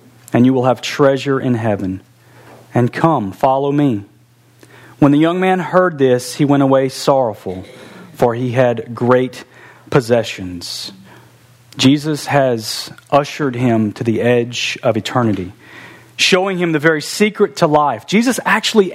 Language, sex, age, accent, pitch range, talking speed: English, male, 40-59, American, 120-160 Hz, 140 wpm